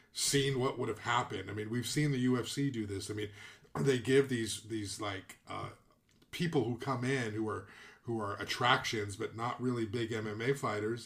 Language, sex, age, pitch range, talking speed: English, male, 30-49, 110-140 Hz, 195 wpm